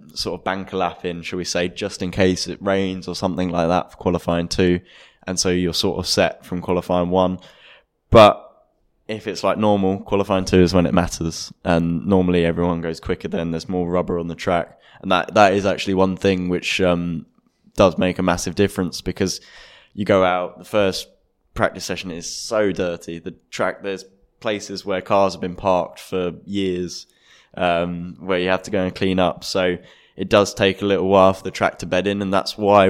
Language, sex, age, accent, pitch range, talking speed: English, male, 10-29, British, 90-95 Hz, 205 wpm